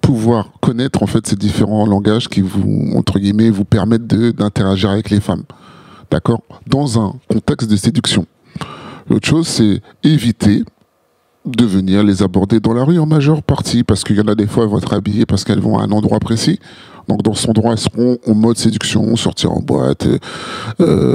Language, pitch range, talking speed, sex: French, 105-125 Hz, 195 wpm, male